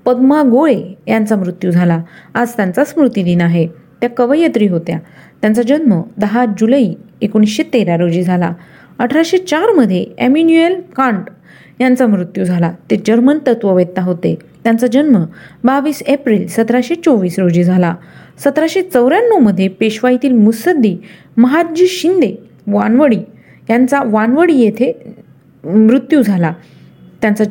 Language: Marathi